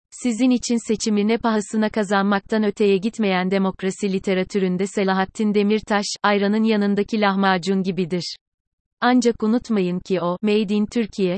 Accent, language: native, Turkish